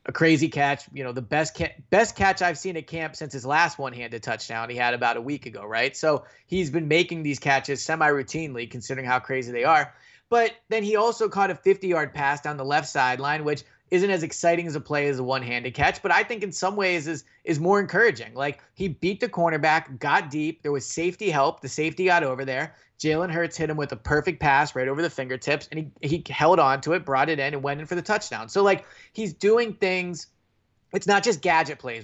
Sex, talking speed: male, 235 wpm